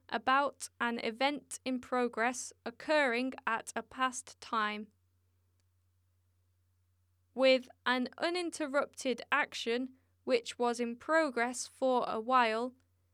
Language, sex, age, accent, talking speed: English, female, 10-29, British, 95 wpm